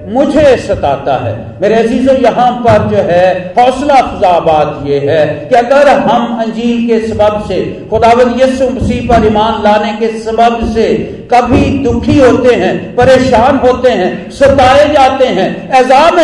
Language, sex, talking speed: Hindi, male, 150 wpm